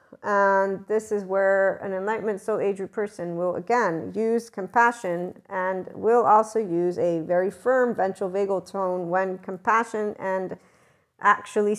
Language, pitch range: English, 175-210 Hz